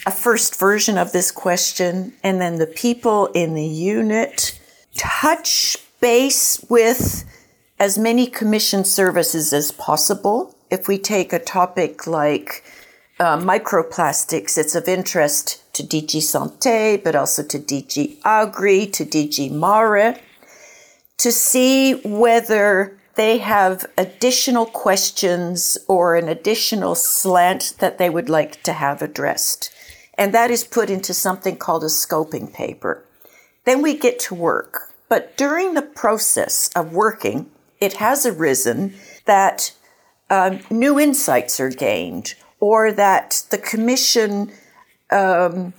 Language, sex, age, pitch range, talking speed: English, female, 50-69, 175-235 Hz, 125 wpm